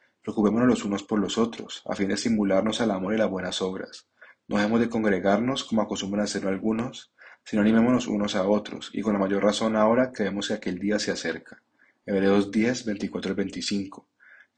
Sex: male